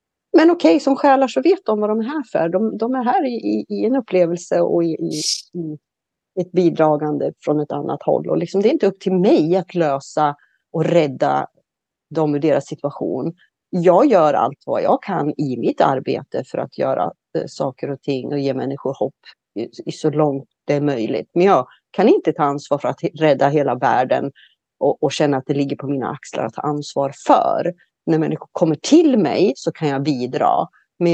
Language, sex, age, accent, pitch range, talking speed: Swedish, female, 40-59, native, 140-185 Hz, 200 wpm